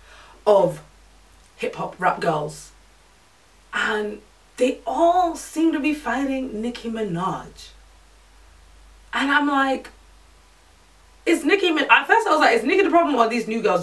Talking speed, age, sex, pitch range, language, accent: 150 wpm, 20-39, female, 165-255 Hz, English, British